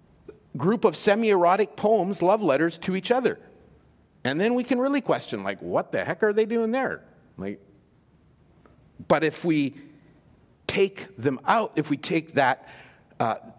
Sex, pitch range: male, 130-205 Hz